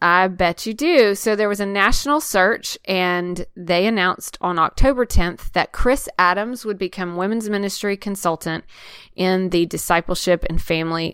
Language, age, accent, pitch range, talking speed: English, 30-49, American, 165-195 Hz, 155 wpm